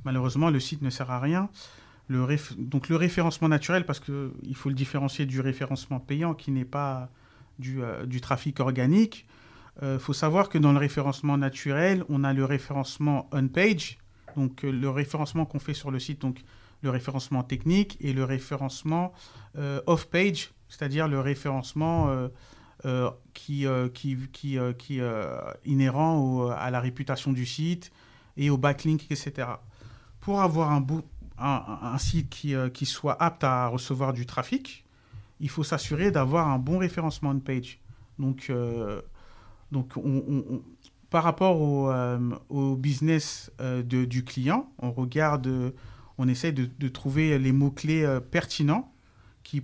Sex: male